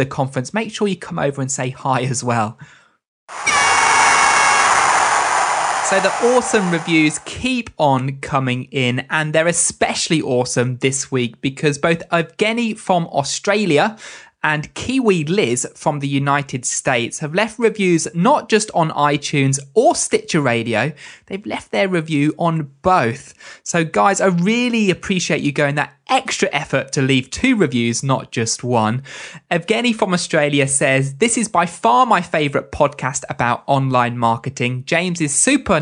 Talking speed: 145 wpm